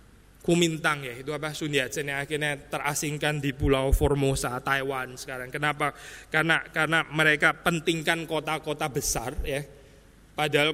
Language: Indonesian